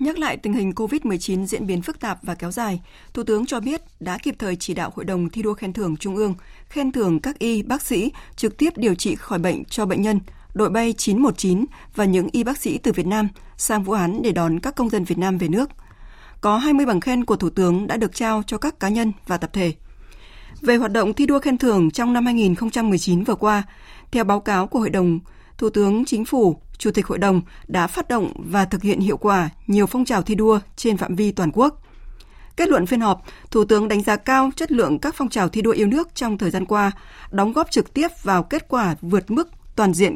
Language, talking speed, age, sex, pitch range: Vietnamese, 240 wpm, 20-39, female, 190-240 Hz